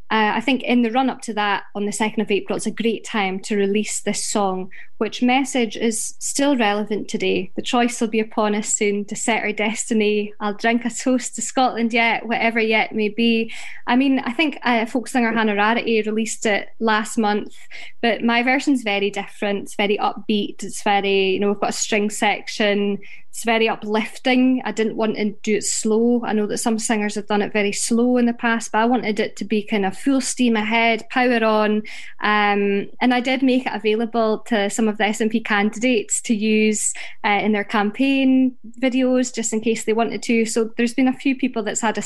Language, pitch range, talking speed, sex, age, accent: English, 210-240 Hz, 215 wpm, female, 20-39, British